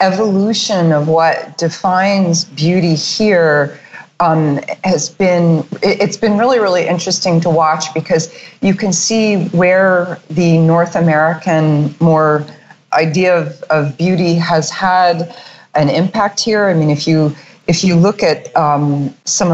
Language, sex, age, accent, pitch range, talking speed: English, female, 40-59, American, 160-190 Hz, 130 wpm